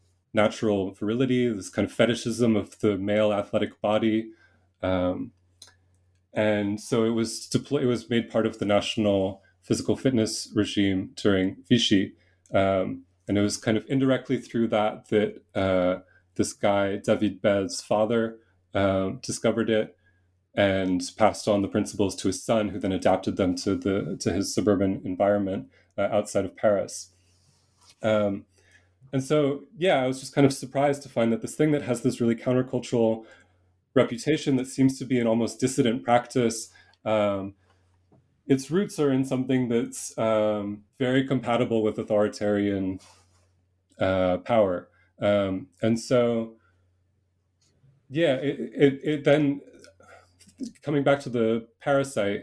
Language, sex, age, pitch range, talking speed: English, male, 30-49, 95-125 Hz, 145 wpm